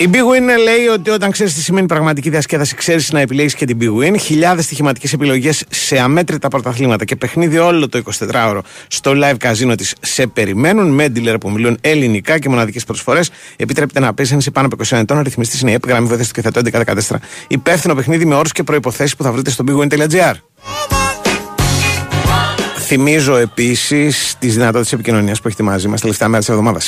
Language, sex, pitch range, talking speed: Greek, male, 110-145 Hz, 180 wpm